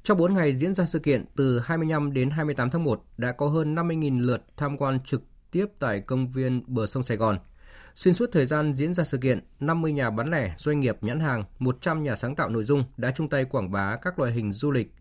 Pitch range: 115-155 Hz